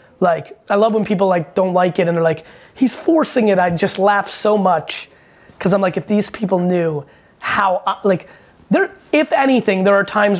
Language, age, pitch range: English, 30-49, 180-225 Hz